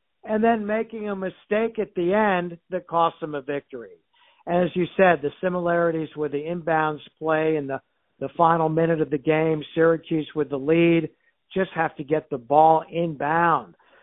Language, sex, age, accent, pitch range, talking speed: English, male, 60-79, American, 145-170 Hz, 175 wpm